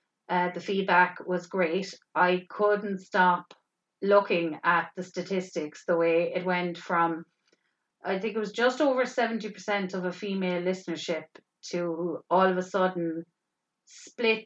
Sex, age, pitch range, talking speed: female, 30-49, 175-215 Hz, 140 wpm